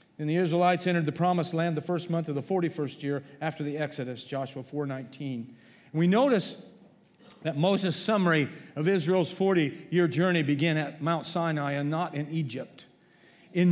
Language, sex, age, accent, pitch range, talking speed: English, male, 40-59, American, 150-190 Hz, 170 wpm